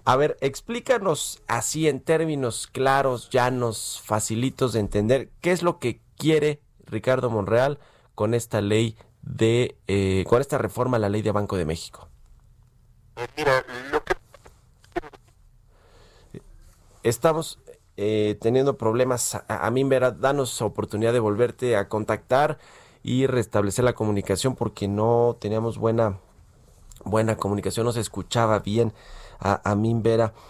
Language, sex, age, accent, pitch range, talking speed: Spanish, male, 30-49, Mexican, 105-130 Hz, 130 wpm